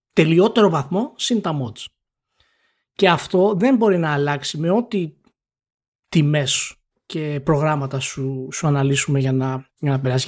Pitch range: 140-200 Hz